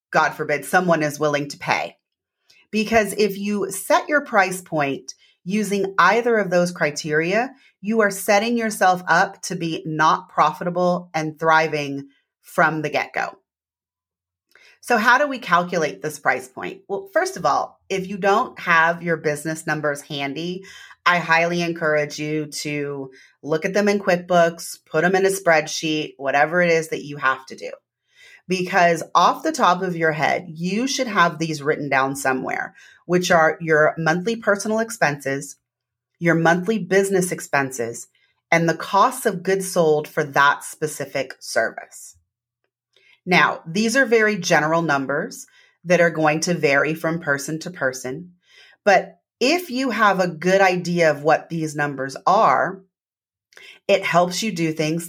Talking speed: 155 wpm